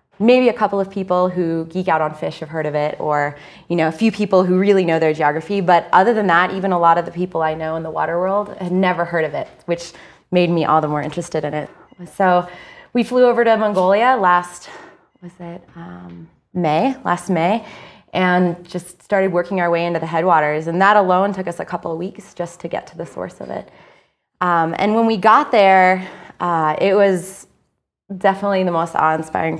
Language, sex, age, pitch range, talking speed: English, female, 20-39, 165-195 Hz, 215 wpm